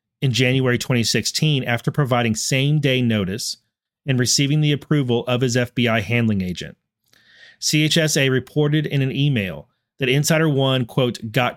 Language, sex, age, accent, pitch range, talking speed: English, male, 30-49, American, 115-145 Hz, 135 wpm